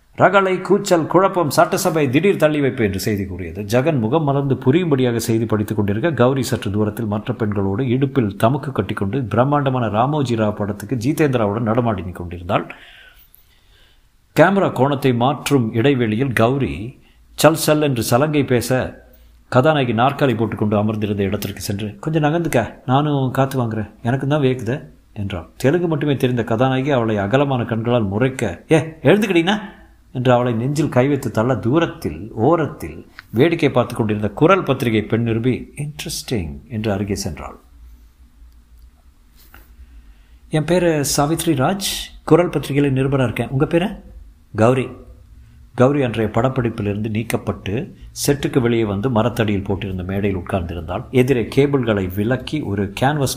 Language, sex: Tamil, male